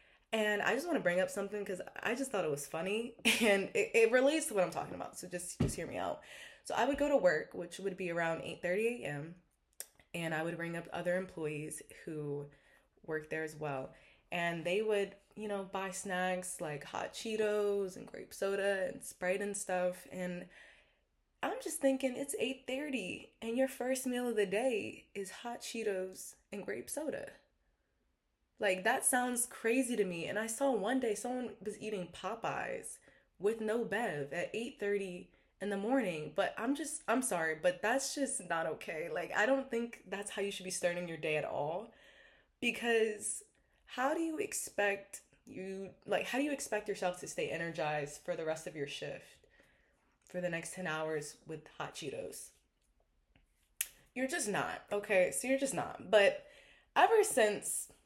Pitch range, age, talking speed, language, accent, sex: 175-240 Hz, 20-39, 185 wpm, English, American, female